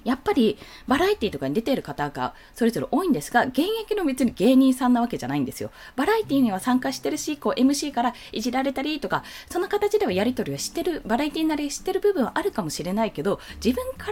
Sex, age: female, 20-39